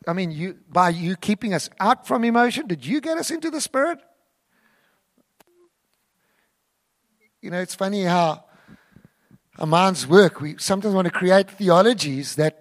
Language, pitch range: English, 185-245 Hz